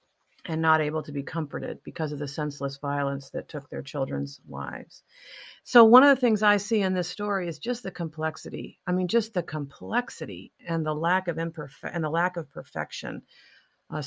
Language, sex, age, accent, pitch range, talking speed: English, female, 50-69, American, 145-170 Hz, 195 wpm